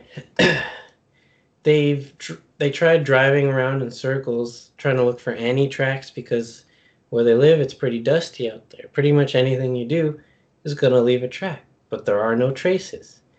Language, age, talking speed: English, 20-39, 175 wpm